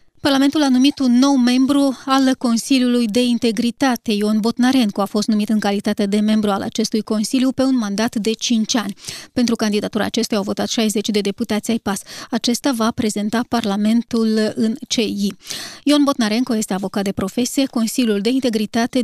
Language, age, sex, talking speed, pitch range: Romanian, 20-39, female, 165 wpm, 215-245 Hz